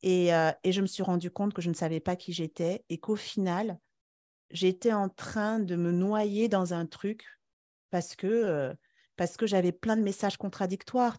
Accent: French